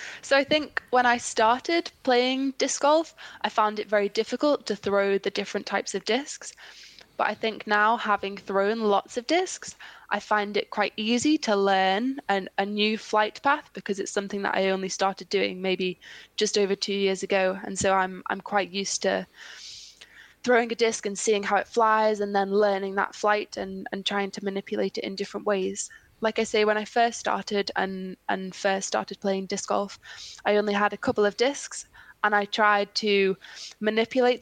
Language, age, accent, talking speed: Swedish, 10-29, British, 190 wpm